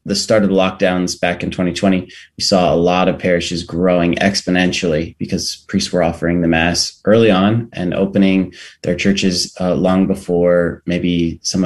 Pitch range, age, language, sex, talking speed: 85-100 Hz, 30-49, English, male, 170 wpm